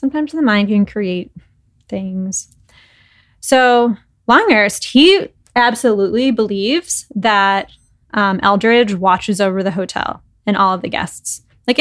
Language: English